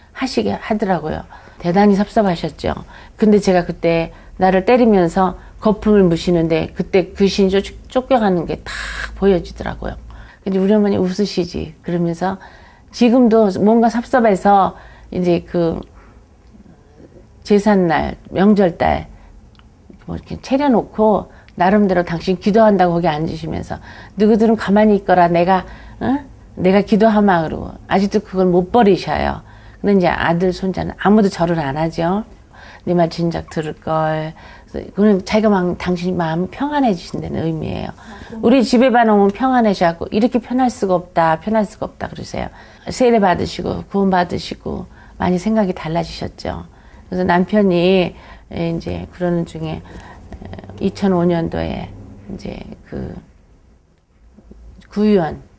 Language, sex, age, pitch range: Korean, female, 40-59, 170-210 Hz